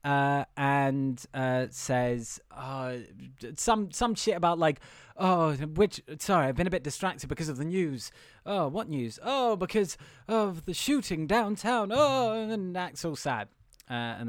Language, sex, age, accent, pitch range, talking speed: English, male, 20-39, British, 135-190 Hz, 160 wpm